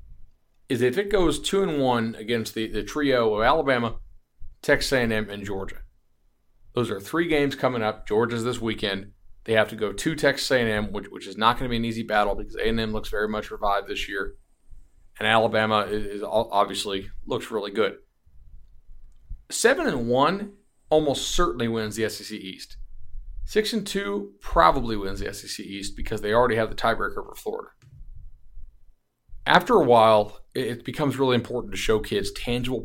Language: English